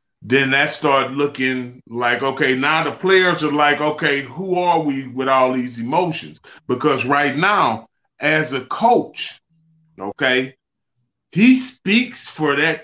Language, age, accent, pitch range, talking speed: English, 30-49, American, 135-185 Hz, 140 wpm